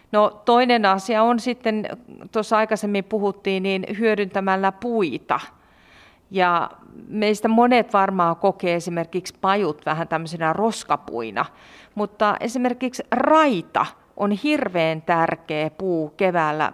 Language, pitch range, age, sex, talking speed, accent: Finnish, 175-230 Hz, 40-59, female, 105 wpm, native